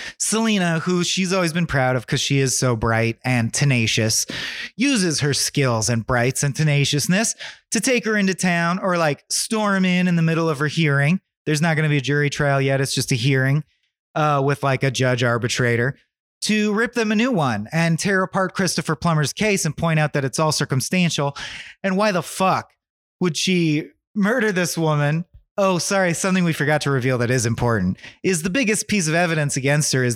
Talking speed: 205 wpm